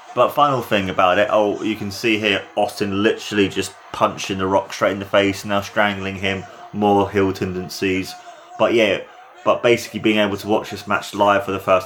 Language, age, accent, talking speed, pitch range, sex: English, 20-39, British, 205 wpm, 100-135 Hz, male